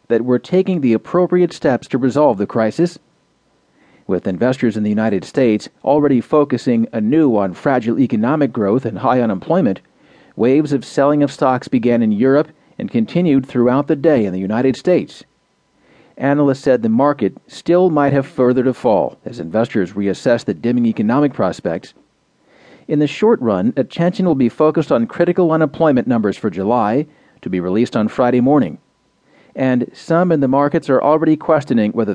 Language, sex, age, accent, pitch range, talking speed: English, male, 40-59, American, 115-150 Hz, 165 wpm